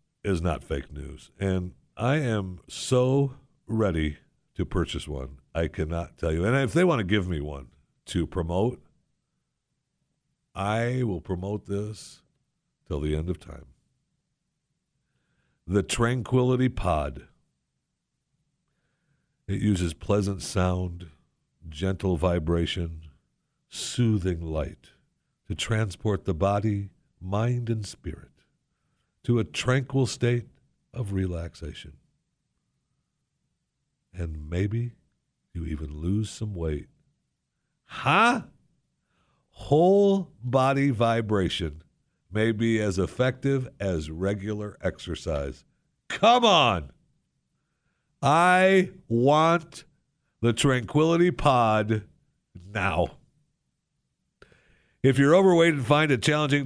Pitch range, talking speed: 85-135 Hz, 95 wpm